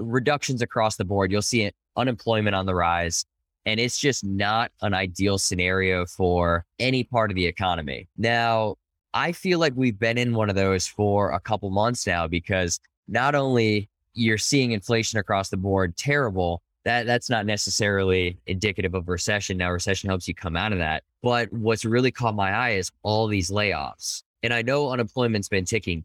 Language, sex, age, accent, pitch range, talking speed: English, male, 10-29, American, 90-115 Hz, 180 wpm